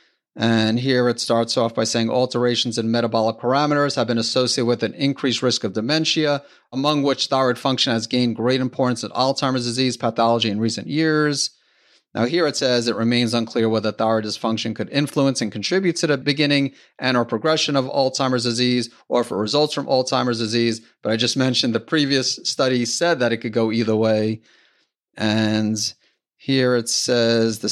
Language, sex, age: English, male, 30-49